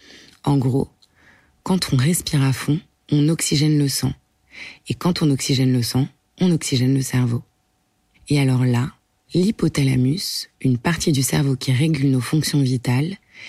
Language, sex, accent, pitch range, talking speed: French, female, French, 130-155 Hz, 150 wpm